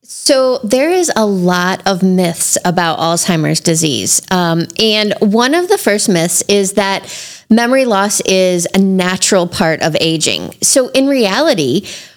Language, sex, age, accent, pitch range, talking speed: English, female, 30-49, American, 175-230 Hz, 150 wpm